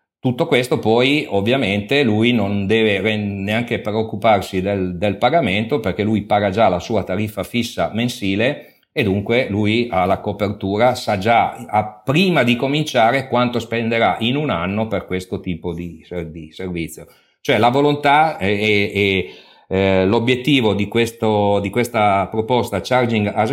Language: Italian